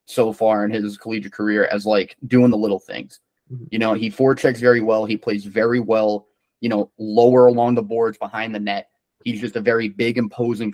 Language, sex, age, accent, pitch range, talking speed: English, male, 20-39, American, 110-130 Hz, 205 wpm